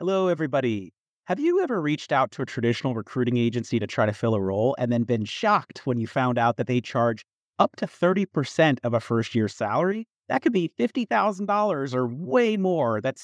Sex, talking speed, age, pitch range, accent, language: male, 205 wpm, 30-49, 115-155 Hz, American, English